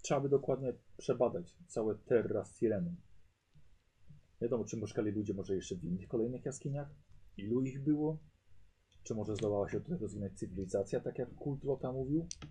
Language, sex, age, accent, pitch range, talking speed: Polish, male, 40-59, native, 95-135 Hz, 160 wpm